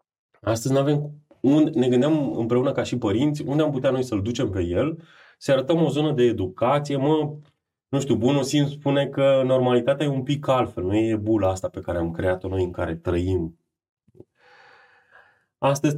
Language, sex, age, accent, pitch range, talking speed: Romanian, male, 30-49, native, 90-125 Hz, 185 wpm